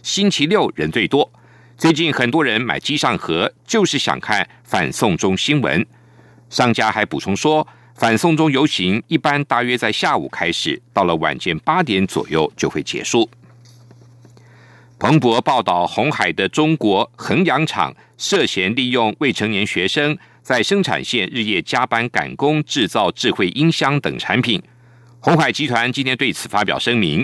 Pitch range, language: 115-155 Hz, German